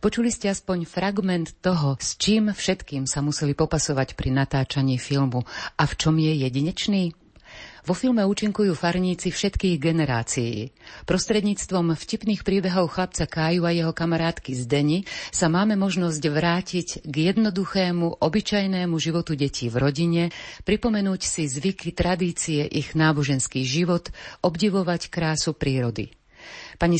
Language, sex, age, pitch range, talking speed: Slovak, female, 50-69, 145-185 Hz, 125 wpm